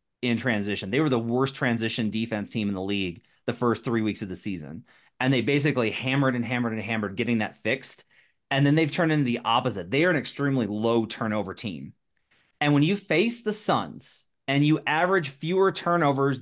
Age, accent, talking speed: 30-49, American, 200 wpm